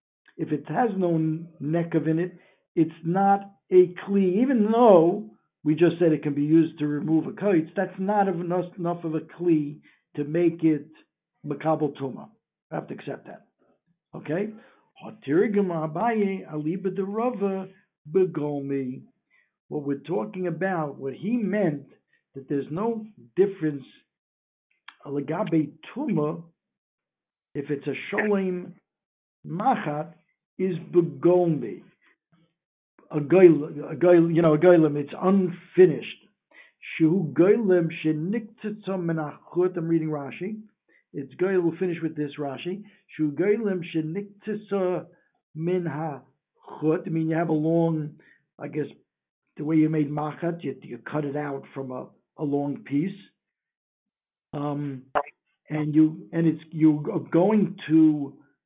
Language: English